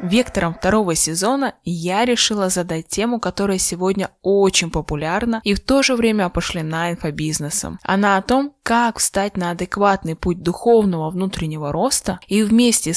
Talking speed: 145 wpm